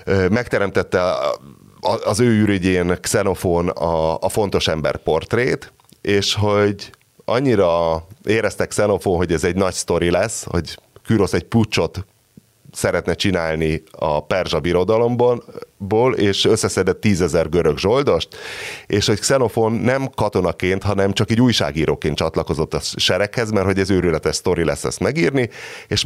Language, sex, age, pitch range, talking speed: Hungarian, male, 30-49, 85-105 Hz, 130 wpm